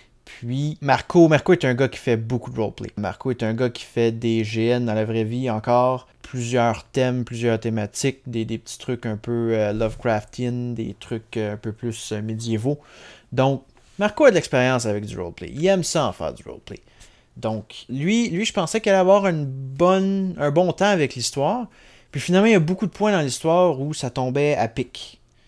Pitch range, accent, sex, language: 120-165 Hz, Canadian, male, English